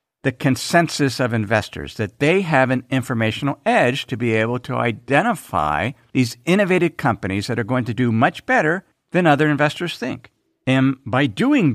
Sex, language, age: male, English, 50-69